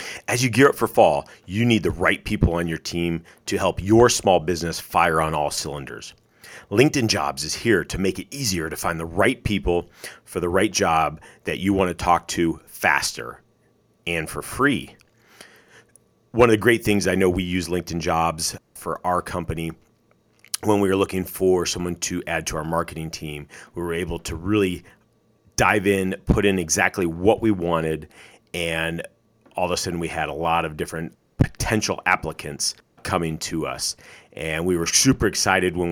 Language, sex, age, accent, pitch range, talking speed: English, male, 40-59, American, 80-100 Hz, 185 wpm